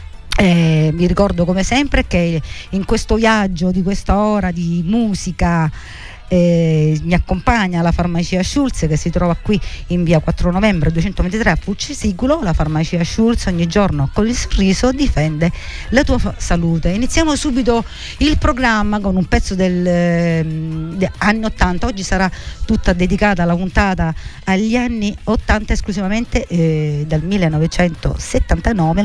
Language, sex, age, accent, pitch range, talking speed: Italian, female, 50-69, native, 165-215 Hz, 140 wpm